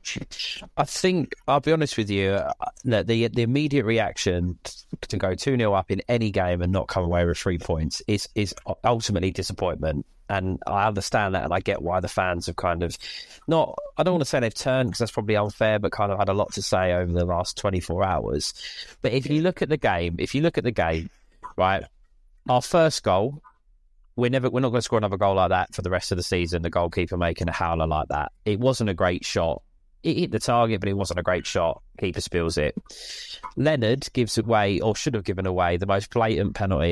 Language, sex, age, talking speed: English, male, 30-49, 225 wpm